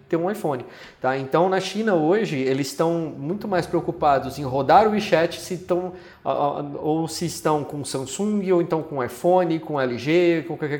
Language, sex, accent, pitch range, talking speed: Portuguese, male, Brazilian, 135-180 Hz, 170 wpm